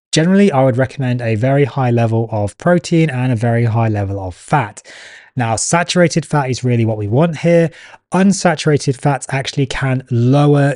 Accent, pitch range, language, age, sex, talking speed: British, 115-155 Hz, English, 20-39, male, 175 wpm